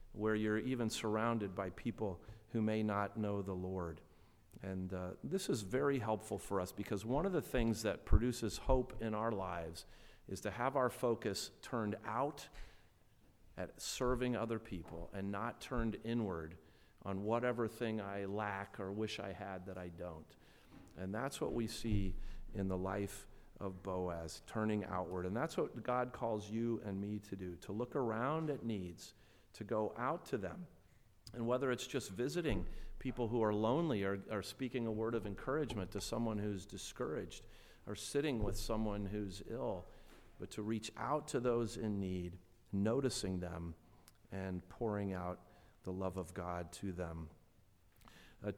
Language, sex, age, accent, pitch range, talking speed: English, male, 40-59, American, 95-115 Hz, 170 wpm